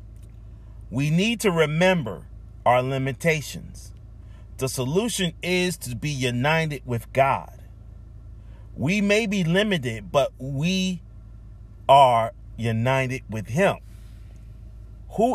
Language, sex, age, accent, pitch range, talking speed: English, male, 40-59, American, 100-130 Hz, 100 wpm